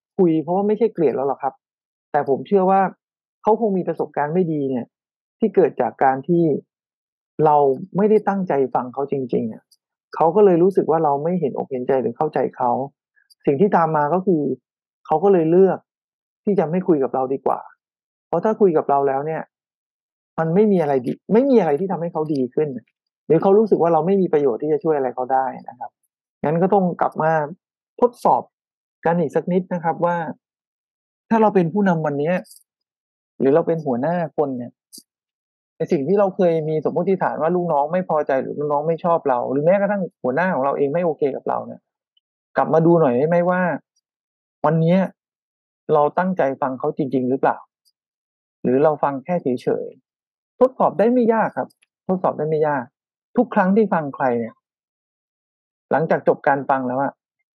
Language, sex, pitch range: English, male, 145-190 Hz